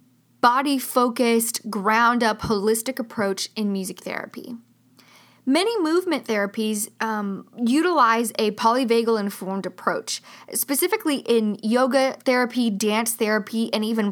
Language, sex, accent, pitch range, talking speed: English, female, American, 210-255 Hz, 110 wpm